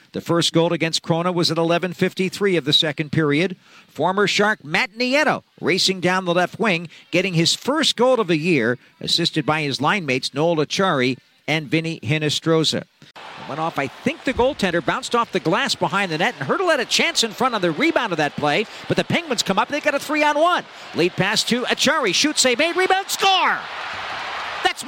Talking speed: 200 wpm